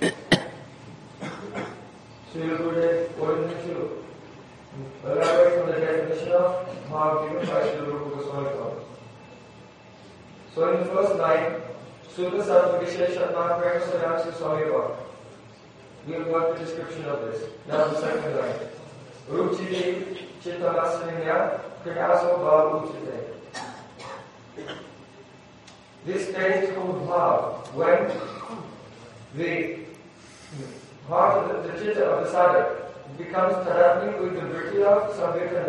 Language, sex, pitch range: Hindi, male, 155-195 Hz